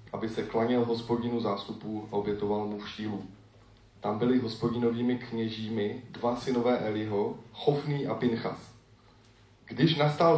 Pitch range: 105-125 Hz